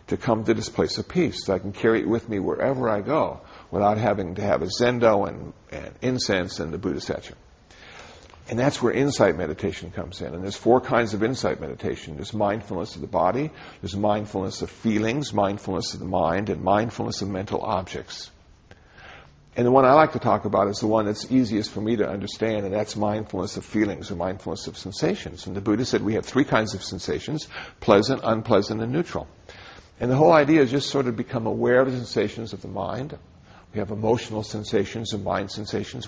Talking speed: 210 wpm